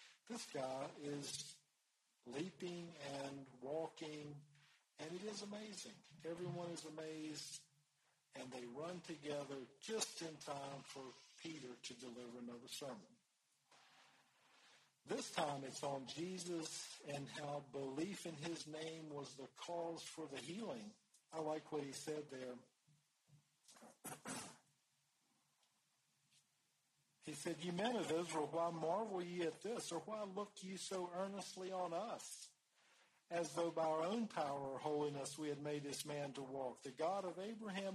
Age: 50-69